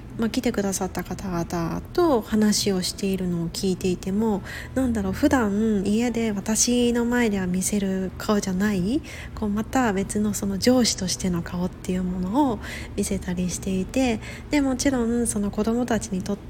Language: Japanese